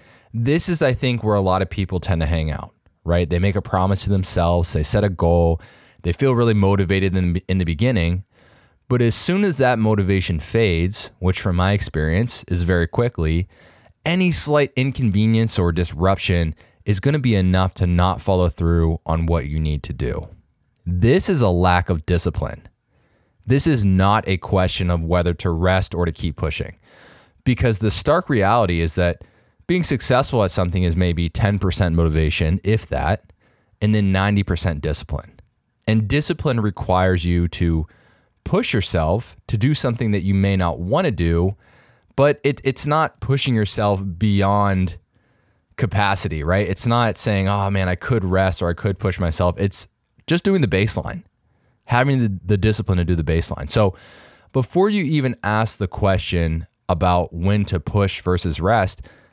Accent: American